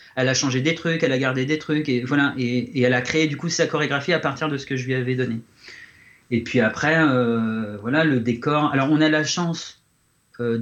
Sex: male